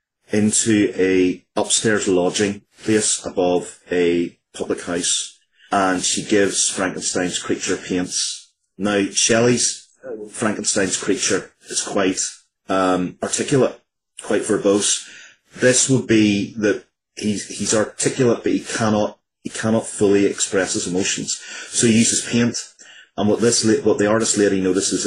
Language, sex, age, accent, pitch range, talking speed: English, male, 30-49, British, 85-105 Hz, 130 wpm